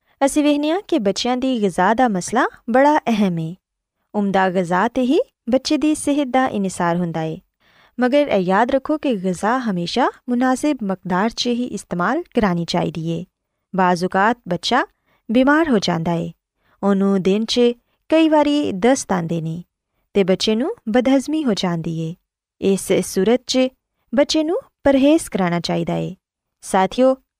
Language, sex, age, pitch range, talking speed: Urdu, female, 20-39, 190-275 Hz, 135 wpm